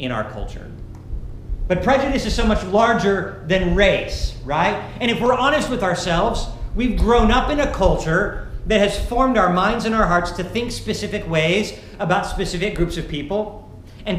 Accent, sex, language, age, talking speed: American, male, English, 50-69, 180 wpm